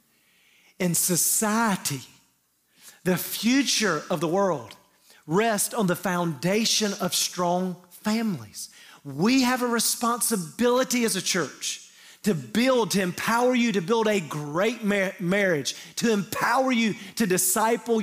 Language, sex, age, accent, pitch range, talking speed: English, male, 40-59, American, 170-230 Hz, 120 wpm